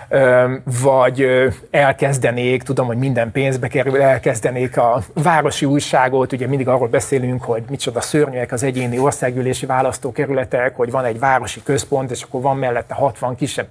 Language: Hungarian